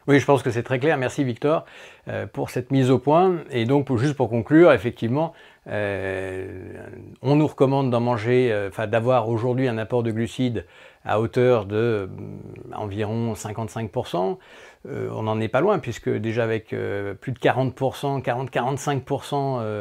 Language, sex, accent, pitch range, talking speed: French, male, French, 110-140 Hz, 140 wpm